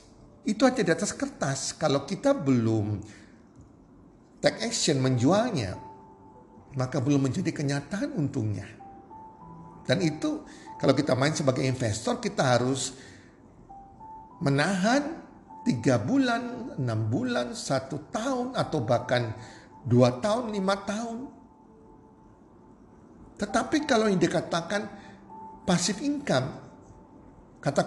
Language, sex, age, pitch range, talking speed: Indonesian, male, 50-69, 125-200 Hz, 95 wpm